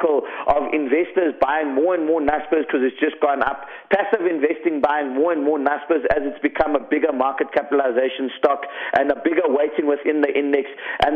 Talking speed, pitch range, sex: 190 wpm, 150-200 Hz, male